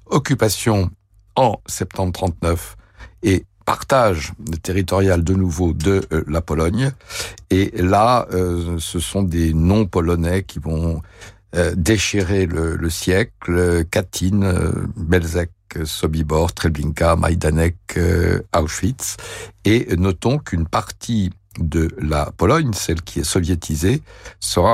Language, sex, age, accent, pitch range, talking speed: French, male, 60-79, French, 85-105 Hz, 105 wpm